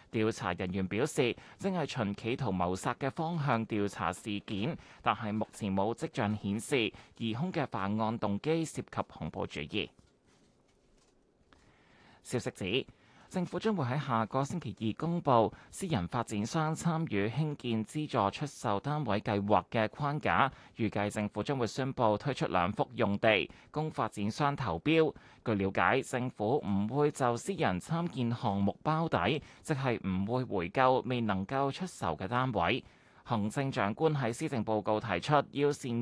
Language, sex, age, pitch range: Chinese, male, 20-39, 105-145 Hz